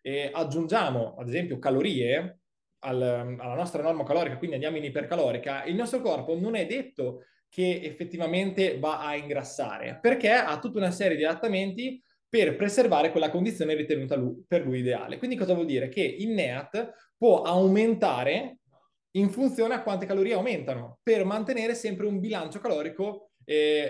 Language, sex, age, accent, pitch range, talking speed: Italian, male, 20-39, native, 150-200 Hz, 160 wpm